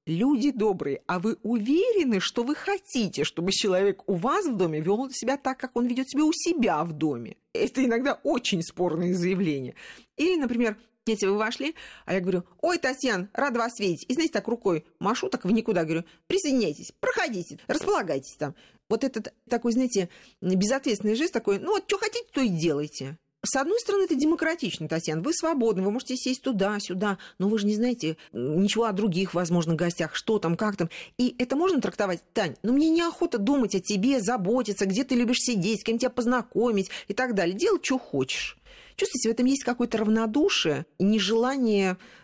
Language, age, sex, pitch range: Russian, 40-59, female, 185-260 Hz